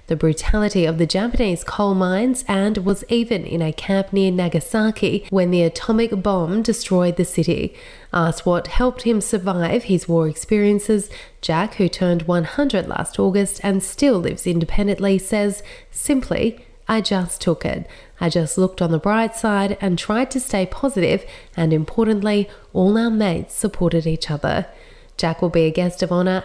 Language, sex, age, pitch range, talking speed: English, female, 30-49, 170-220 Hz, 165 wpm